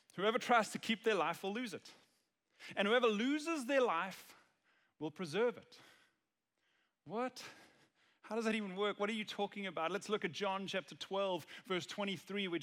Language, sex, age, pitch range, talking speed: English, male, 30-49, 150-210 Hz, 175 wpm